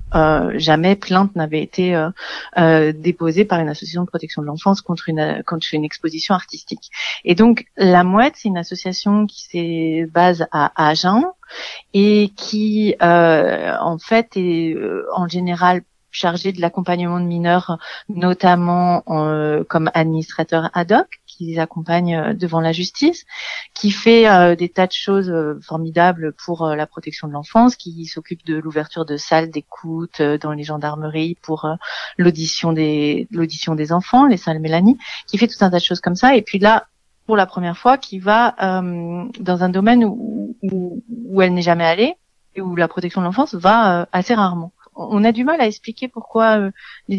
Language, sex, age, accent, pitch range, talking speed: French, female, 40-59, French, 165-210 Hz, 180 wpm